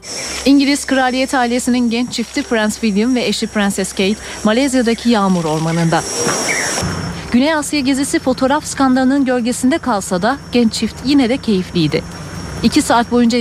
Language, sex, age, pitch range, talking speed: Turkish, female, 40-59, 200-250 Hz, 135 wpm